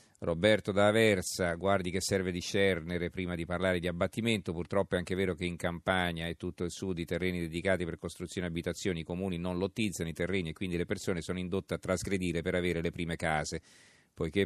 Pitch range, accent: 85-95 Hz, native